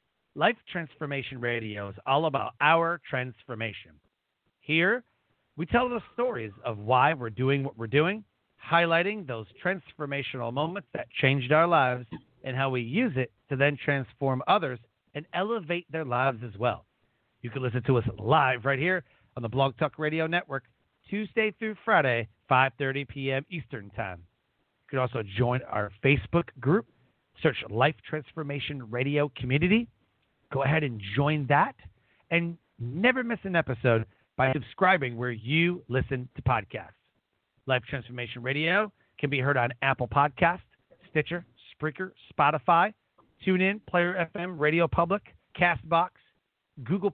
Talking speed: 145 wpm